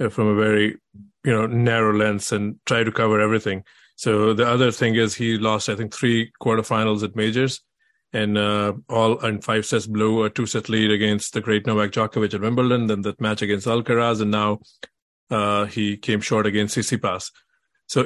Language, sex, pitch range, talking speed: English, male, 110-120 Hz, 190 wpm